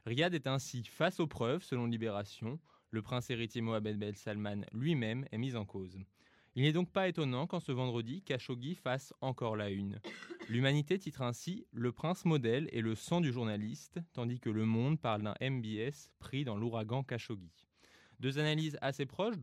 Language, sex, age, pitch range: French, male, 20-39, 110-140 Hz